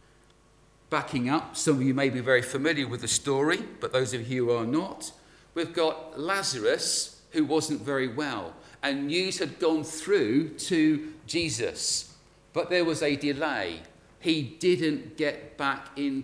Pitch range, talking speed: 125-160 Hz, 160 wpm